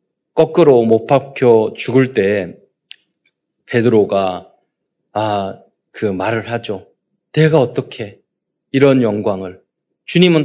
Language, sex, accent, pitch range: Korean, male, native, 115-185 Hz